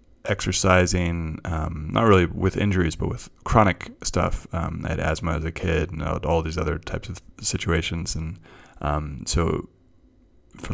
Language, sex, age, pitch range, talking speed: English, male, 20-39, 80-95 Hz, 155 wpm